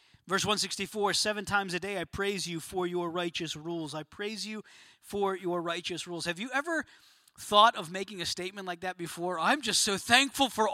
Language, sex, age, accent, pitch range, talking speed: English, male, 30-49, American, 200-275 Hz, 200 wpm